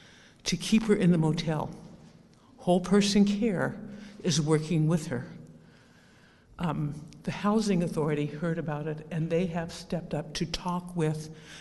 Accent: American